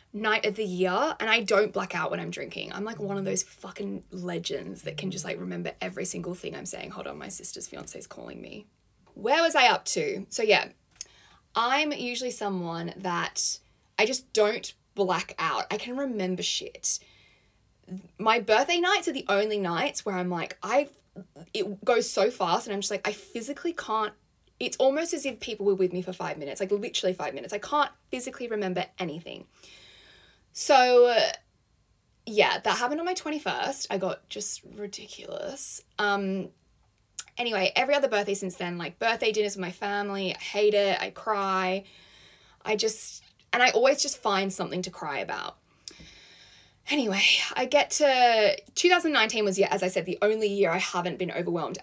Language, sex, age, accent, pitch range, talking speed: English, female, 10-29, Australian, 190-250 Hz, 180 wpm